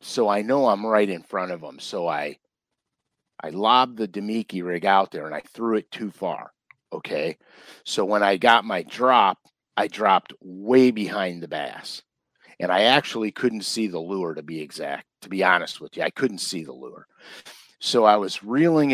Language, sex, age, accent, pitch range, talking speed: English, male, 50-69, American, 95-125 Hz, 195 wpm